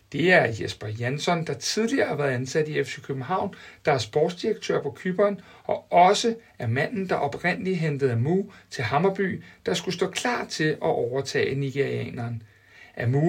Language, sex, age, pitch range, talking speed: Danish, male, 60-79, 135-190 Hz, 165 wpm